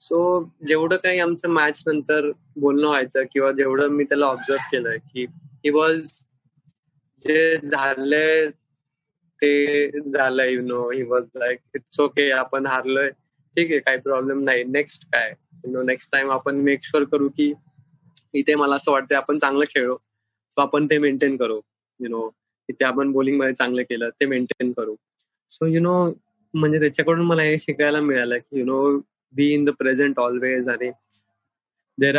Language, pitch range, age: Marathi, 130-150 Hz, 20-39